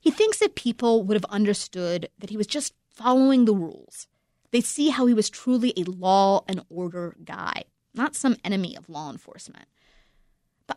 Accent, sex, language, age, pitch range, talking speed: American, female, English, 30-49, 190-255 Hz, 180 wpm